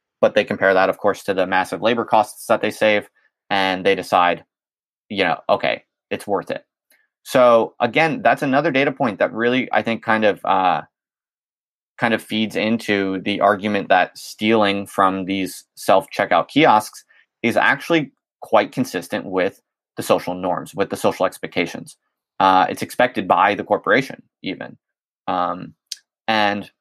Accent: American